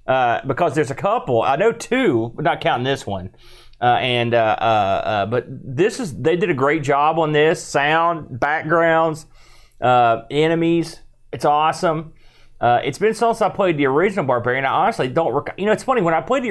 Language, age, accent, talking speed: English, 30-49, American, 200 wpm